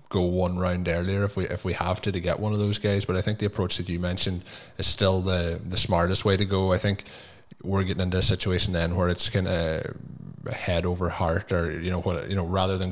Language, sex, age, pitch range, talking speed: English, male, 20-39, 85-100 Hz, 255 wpm